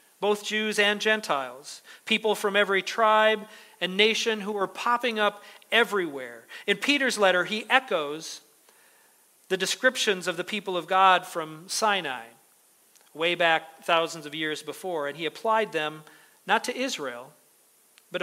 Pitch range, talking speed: 165-225 Hz, 140 wpm